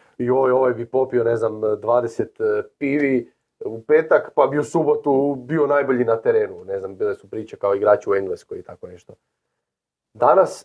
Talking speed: 175 wpm